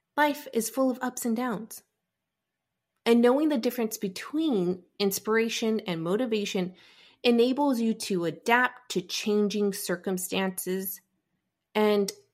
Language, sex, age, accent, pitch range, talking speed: English, female, 30-49, American, 190-230 Hz, 110 wpm